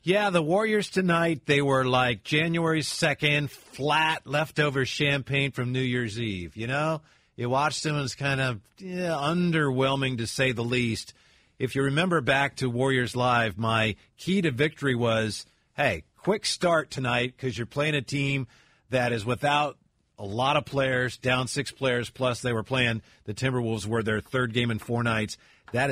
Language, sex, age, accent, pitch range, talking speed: English, male, 50-69, American, 120-145 Hz, 175 wpm